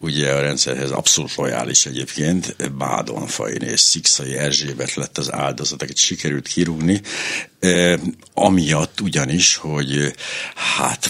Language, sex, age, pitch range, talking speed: Hungarian, male, 60-79, 75-100 Hz, 115 wpm